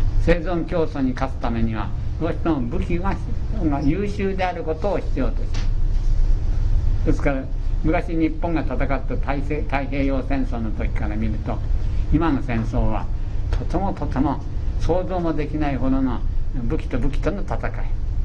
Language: Japanese